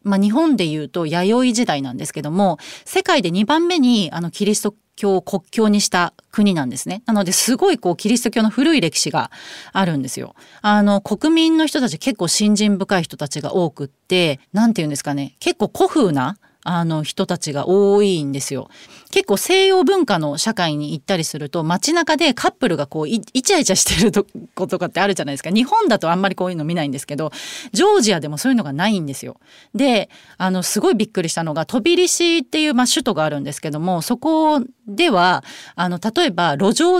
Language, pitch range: Japanese, 160-250 Hz